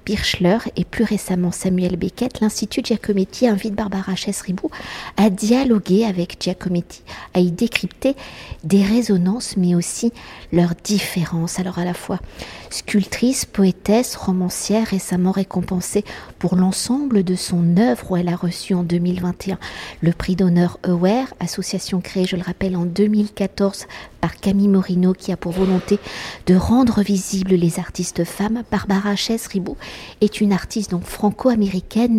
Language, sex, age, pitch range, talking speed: French, female, 50-69, 180-210 Hz, 140 wpm